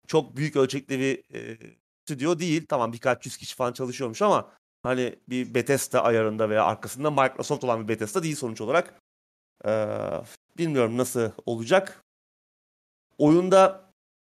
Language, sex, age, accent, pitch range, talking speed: Turkish, male, 30-49, native, 120-150 Hz, 135 wpm